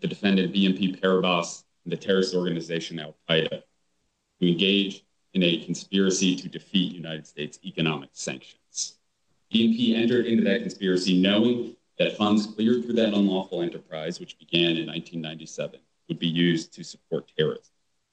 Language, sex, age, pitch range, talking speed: English, male, 40-59, 85-105 Hz, 145 wpm